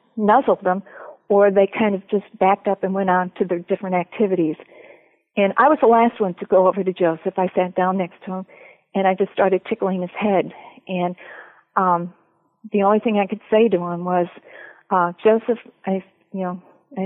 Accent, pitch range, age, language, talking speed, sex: American, 185-220 Hz, 50-69, English, 195 wpm, female